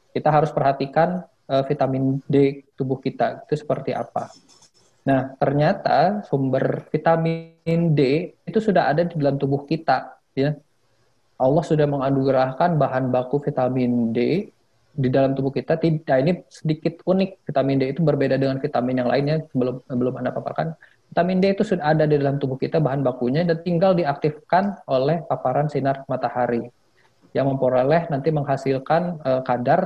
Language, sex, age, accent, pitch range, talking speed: Indonesian, male, 20-39, native, 130-160 Hz, 150 wpm